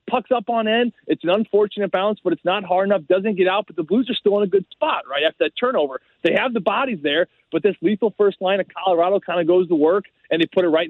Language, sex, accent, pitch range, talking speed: English, male, American, 185-255 Hz, 280 wpm